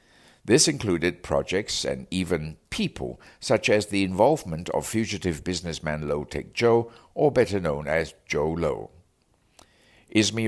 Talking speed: 130 wpm